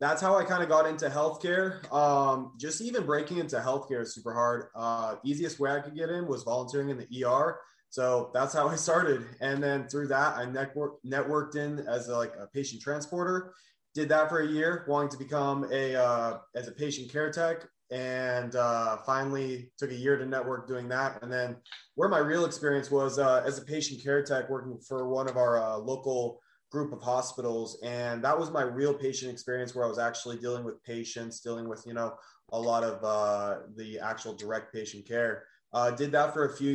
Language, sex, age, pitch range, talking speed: English, male, 20-39, 120-140 Hz, 210 wpm